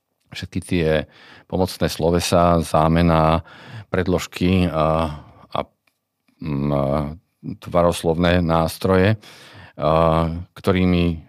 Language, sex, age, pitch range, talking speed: Slovak, male, 40-59, 80-95 Hz, 70 wpm